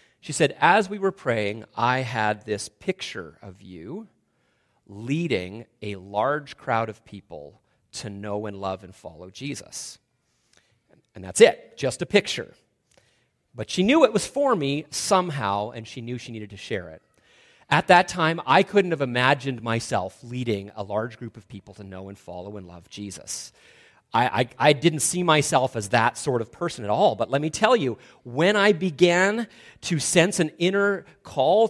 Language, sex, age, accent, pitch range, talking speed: English, male, 30-49, American, 110-170 Hz, 175 wpm